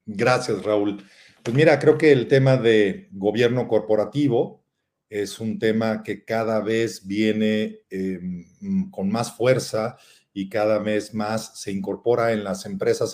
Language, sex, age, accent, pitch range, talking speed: Spanish, male, 40-59, Mexican, 105-135 Hz, 140 wpm